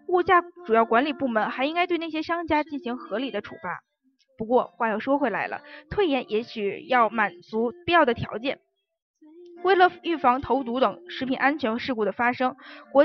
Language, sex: Chinese, female